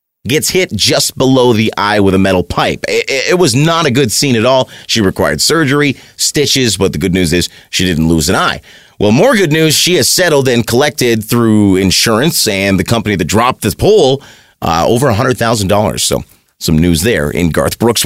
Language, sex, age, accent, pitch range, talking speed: English, male, 30-49, American, 100-145 Hz, 205 wpm